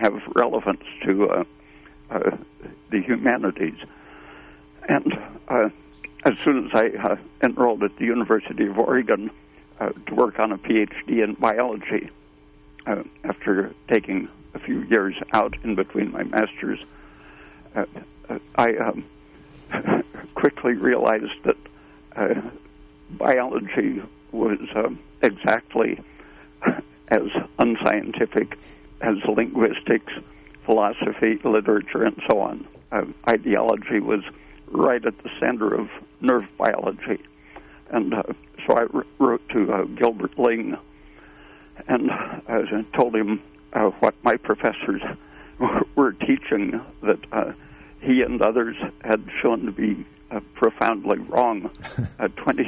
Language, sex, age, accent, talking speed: English, male, 60-79, American, 115 wpm